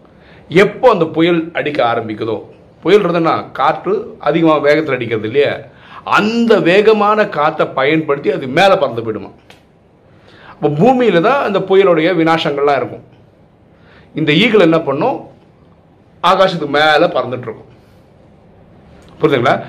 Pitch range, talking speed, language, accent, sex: 155-210 Hz, 105 wpm, Tamil, native, male